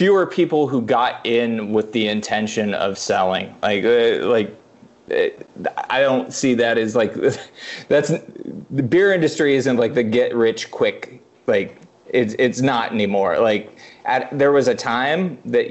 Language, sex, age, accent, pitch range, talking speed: English, male, 30-49, American, 105-125 Hz, 160 wpm